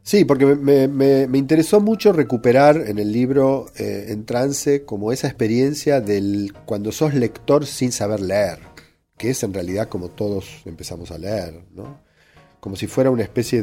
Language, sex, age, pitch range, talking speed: Spanish, male, 40-59, 100-130 Hz, 170 wpm